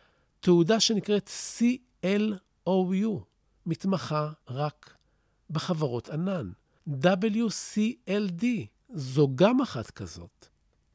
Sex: male